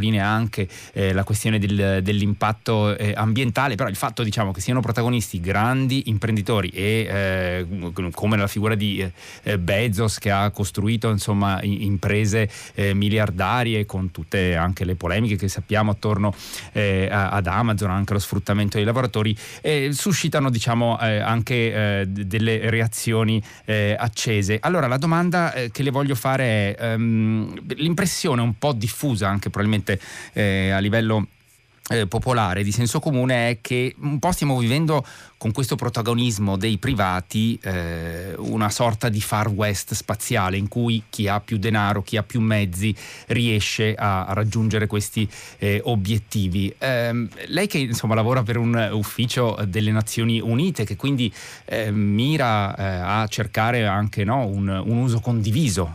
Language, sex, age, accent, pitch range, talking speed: Italian, male, 30-49, native, 100-120 Hz, 155 wpm